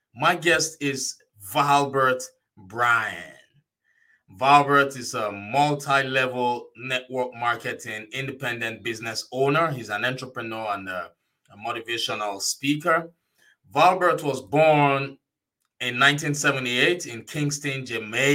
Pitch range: 115-150 Hz